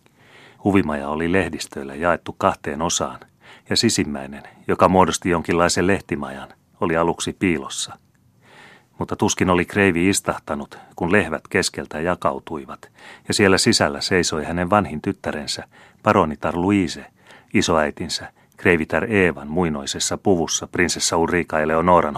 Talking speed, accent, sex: 110 wpm, native, male